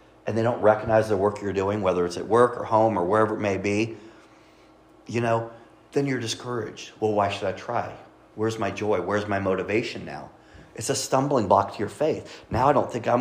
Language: English